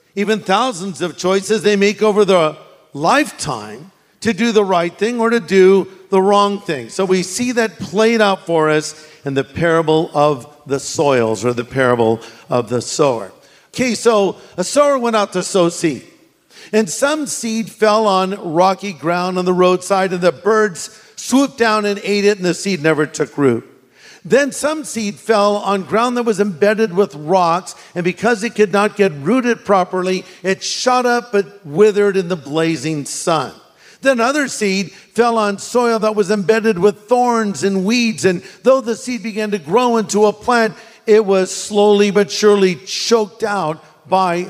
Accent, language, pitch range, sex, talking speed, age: American, English, 170-220 Hz, male, 180 wpm, 50-69